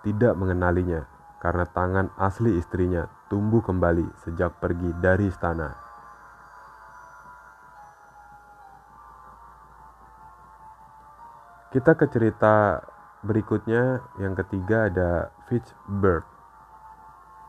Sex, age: male, 20-39